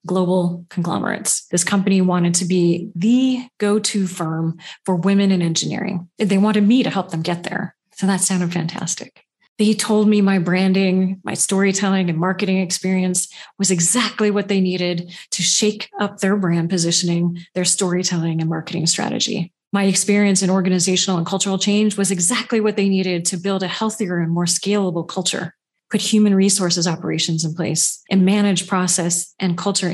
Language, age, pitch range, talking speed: English, 30-49, 175-200 Hz, 165 wpm